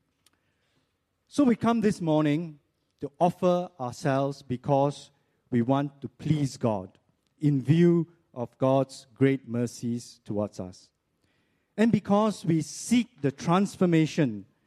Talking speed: 115 wpm